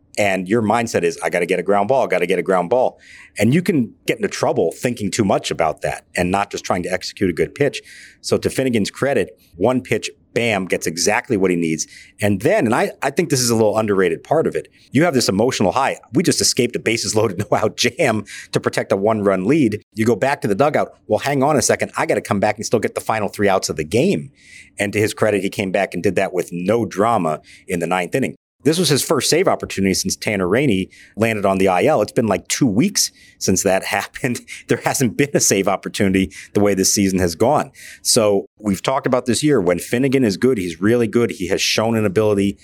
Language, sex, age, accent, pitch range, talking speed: English, male, 50-69, American, 95-125 Hz, 250 wpm